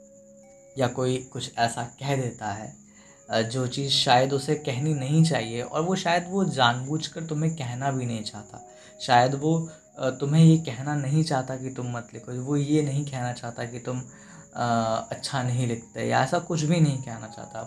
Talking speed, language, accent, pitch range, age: 175 wpm, Hindi, native, 120-160 Hz, 20-39